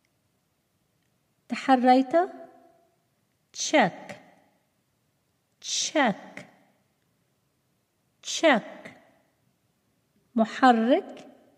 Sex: female